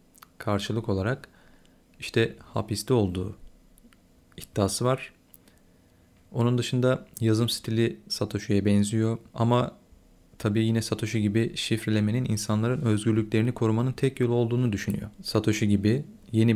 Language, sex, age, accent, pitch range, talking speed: Turkish, male, 40-59, native, 105-120 Hz, 105 wpm